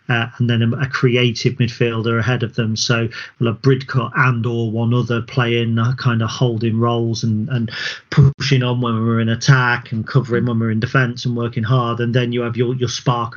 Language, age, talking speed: English, 40-59, 225 wpm